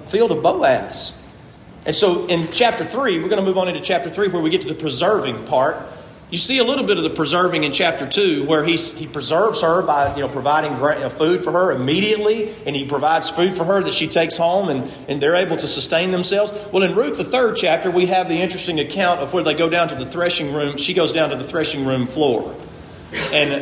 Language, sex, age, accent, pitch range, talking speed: English, male, 40-59, American, 150-185 Hz, 235 wpm